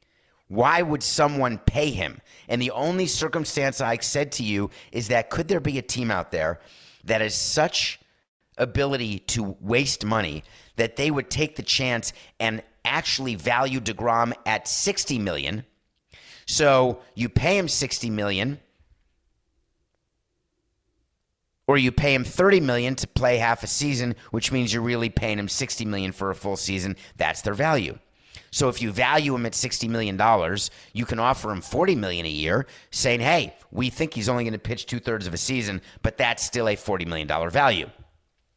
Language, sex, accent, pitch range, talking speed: English, male, American, 95-125 Hz, 170 wpm